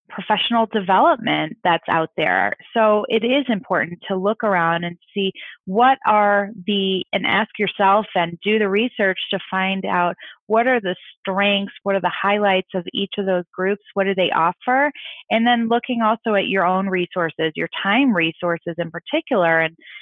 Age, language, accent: 30-49, English, American